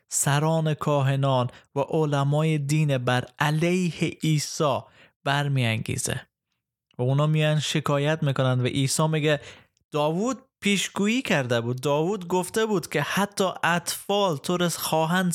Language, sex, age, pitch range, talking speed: Persian, male, 20-39, 135-175 Hz, 115 wpm